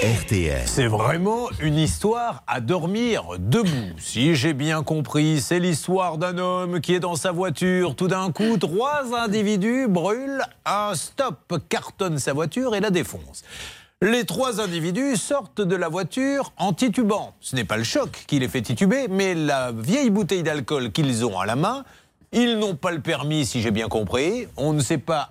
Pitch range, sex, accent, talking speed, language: 135-210 Hz, male, French, 180 wpm, French